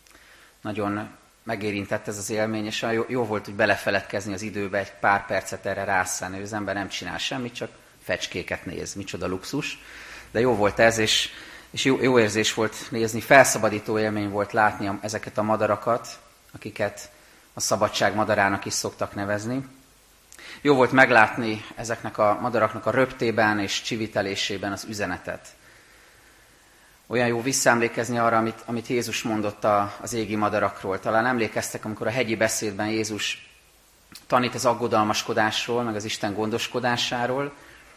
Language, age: Hungarian, 30-49